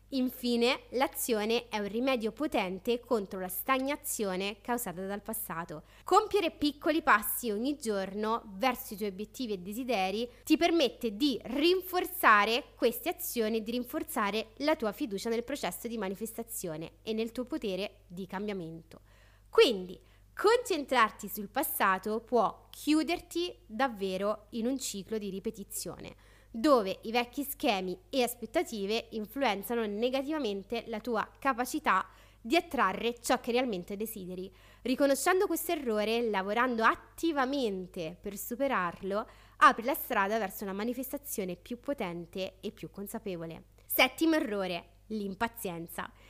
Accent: native